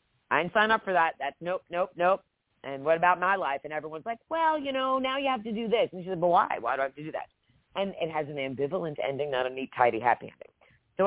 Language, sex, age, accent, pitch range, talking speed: English, female, 40-59, American, 140-180 Hz, 280 wpm